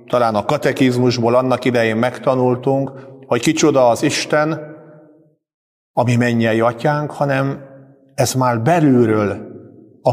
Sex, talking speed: male, 105 wpm